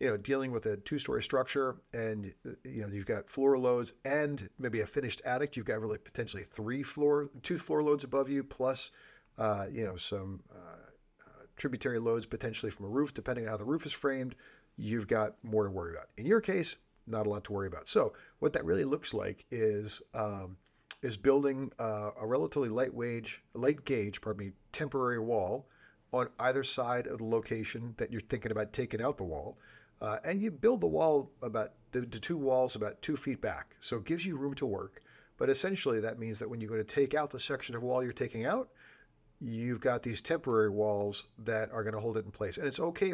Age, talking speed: 40-59, 220 wpm